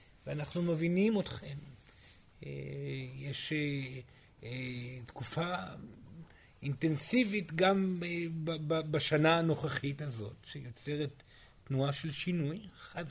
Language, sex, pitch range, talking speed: Hebrew, male, 125-170 Hz, 70 wpm